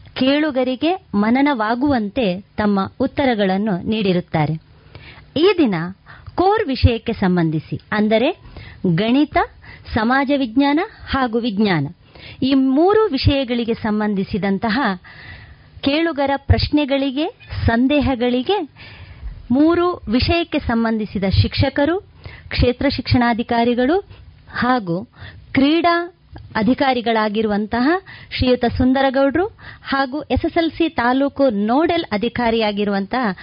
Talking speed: 70 wpm